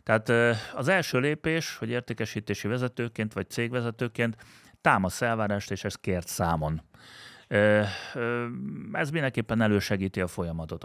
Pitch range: 95-120 Hz